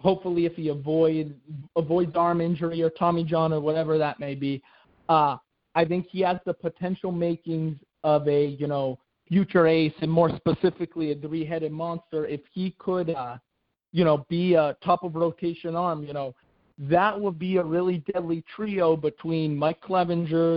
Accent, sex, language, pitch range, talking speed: American, male, English, 155-175 Hz, 165 wpm